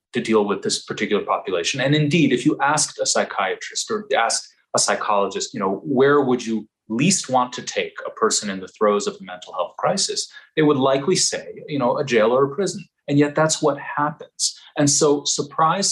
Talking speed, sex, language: 205 wpm, male, English